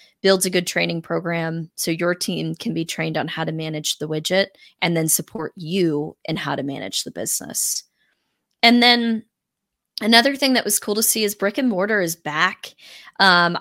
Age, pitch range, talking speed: 20-39, 170-210 Hz, 190 wpm